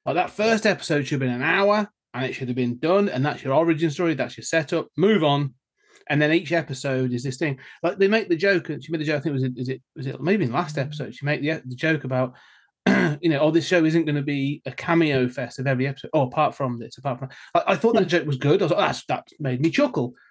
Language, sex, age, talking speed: English, male, 30-49, 285 wpm